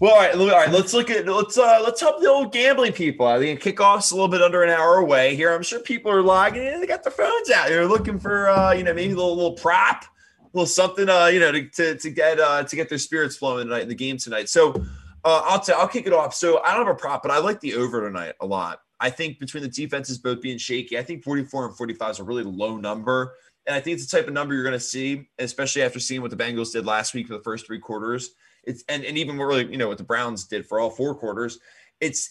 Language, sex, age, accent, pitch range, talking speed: English, male, 20-39, American, 120-175 Hz, 280 wpm